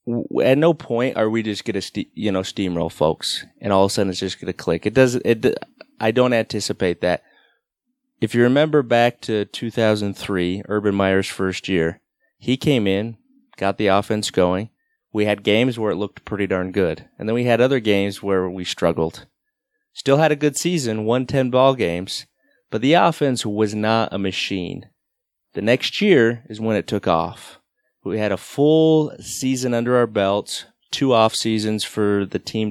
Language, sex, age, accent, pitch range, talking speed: English, male, 30-49, American, 90-115 Hz, 185 wpm